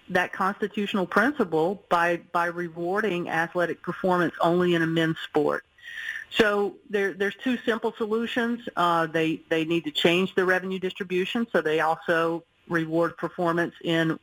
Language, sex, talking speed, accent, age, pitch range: English, female, 145 wpm, American, 50-69, 165-200 Hz